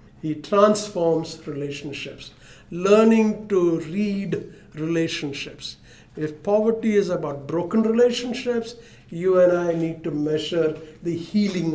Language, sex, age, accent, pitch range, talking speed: English, male, 60-79, Indian, 160-200 Hz, 105 wpm